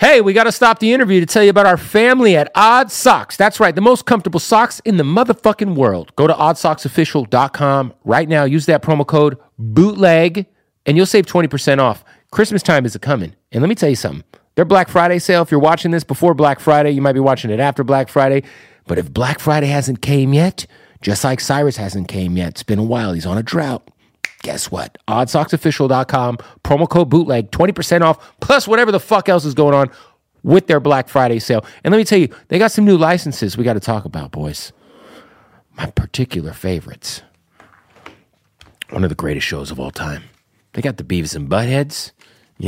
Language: English